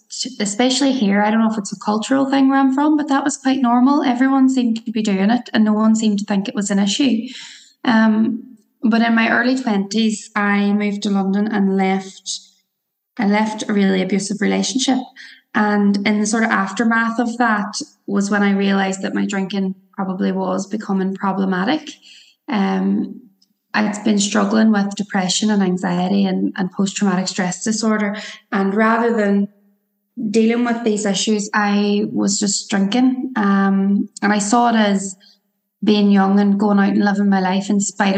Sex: female